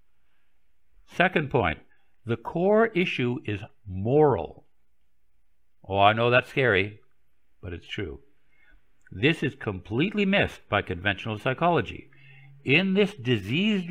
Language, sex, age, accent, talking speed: English, male, 60-79, American, 110 wpm